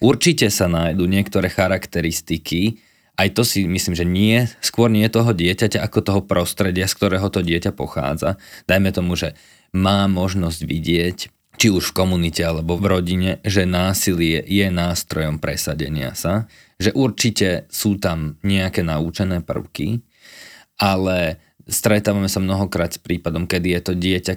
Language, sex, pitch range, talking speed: Slovak, male, 90-105 Hz, 145 wpm